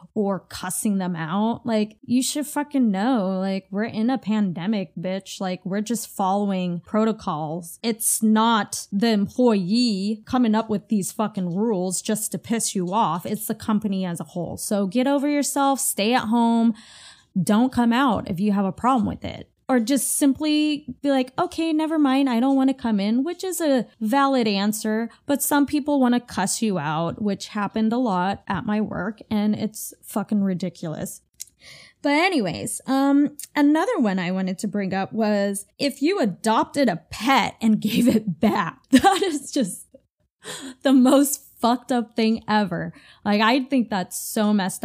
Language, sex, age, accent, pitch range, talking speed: English, female, 10-29, American, 200-250 Hz, 175 wpm